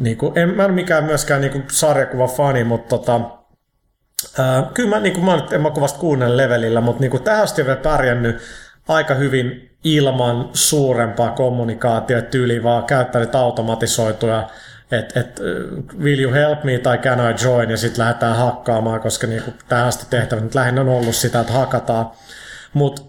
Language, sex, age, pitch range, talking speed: Finnish, male, 30-49, 120-145 Hz, 160 wpm